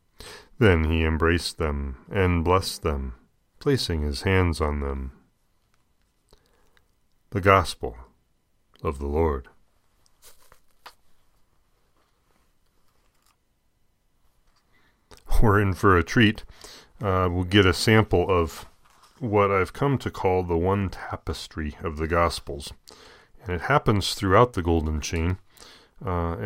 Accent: American